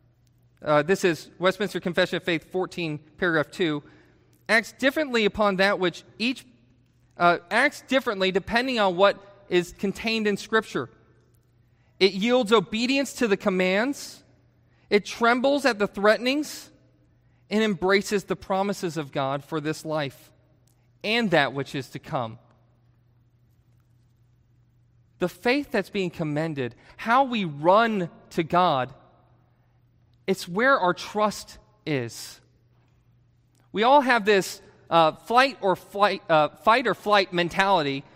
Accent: American